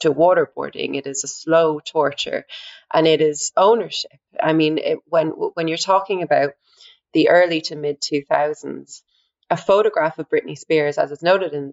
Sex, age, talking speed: female, 30-49, 170 wpm